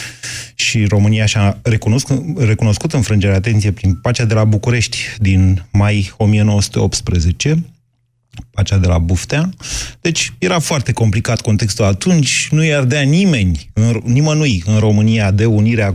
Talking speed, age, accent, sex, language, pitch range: 125 wpm, 30-49, native, male, Romanian, 100-125 Hz